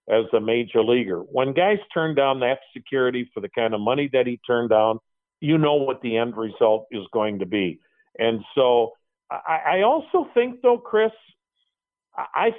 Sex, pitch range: male, 115-170 Hz